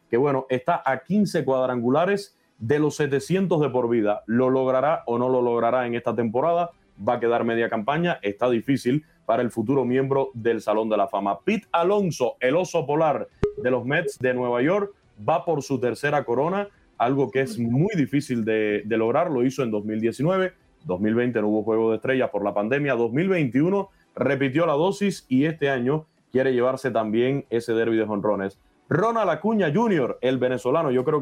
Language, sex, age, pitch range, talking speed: Spanish, male, 30-49, 120-150 Hz, 185 wpm